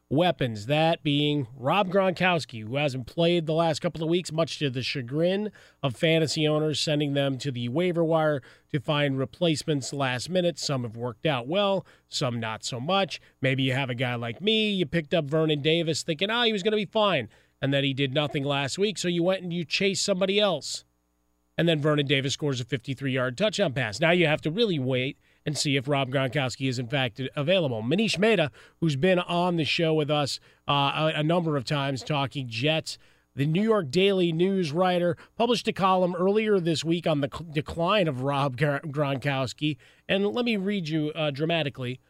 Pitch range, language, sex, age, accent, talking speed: 135-185 Hz, English, male, 30-49, American, 200 wpm